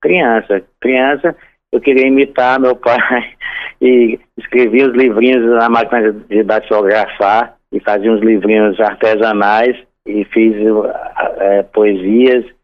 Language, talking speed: Portuguese, 115 wpm